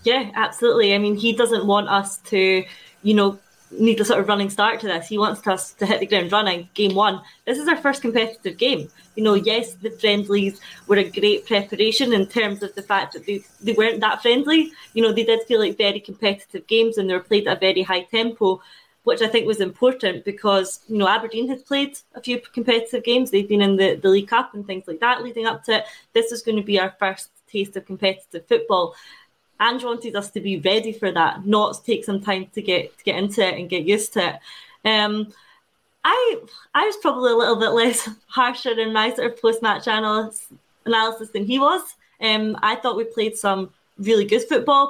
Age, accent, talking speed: 20-39, British, 220 wpm